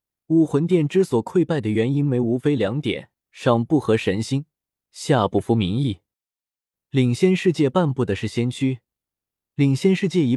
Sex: male